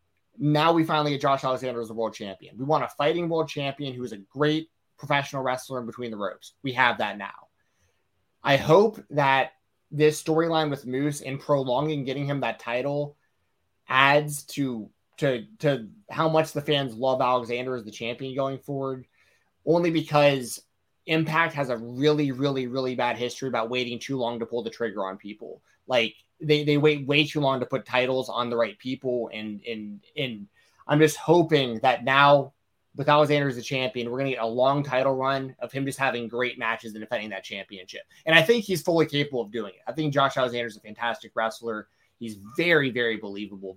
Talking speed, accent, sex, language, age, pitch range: 195 wpm, American, male, English, 20-39, 115-150 Hz